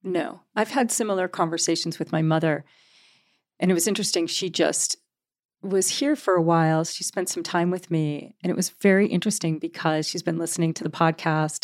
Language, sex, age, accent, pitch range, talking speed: English, female, 40-59, American, 165-190 Hz, 190 wpm